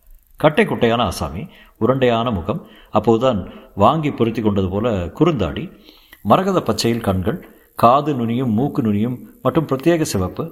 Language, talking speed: Tamil, 115 wpm